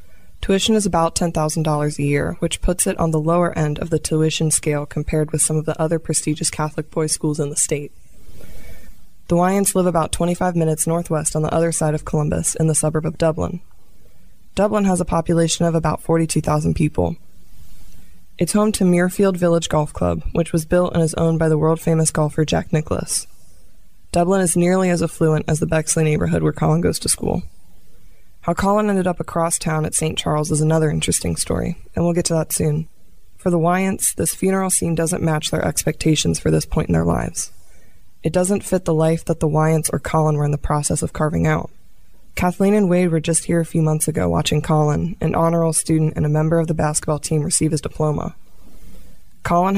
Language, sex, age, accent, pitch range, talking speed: English, female, 20-39, American, 150-170 Hz, 200 wpm